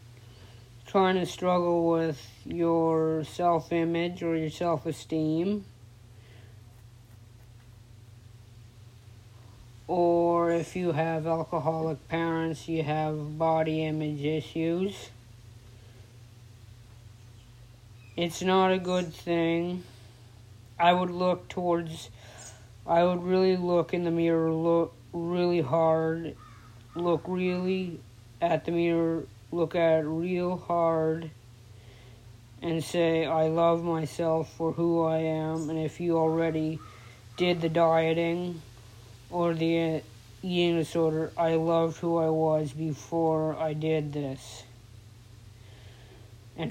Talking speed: 100 wpm